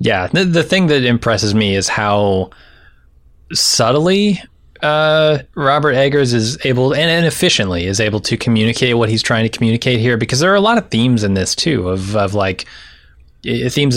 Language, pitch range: English, 100-130 Hz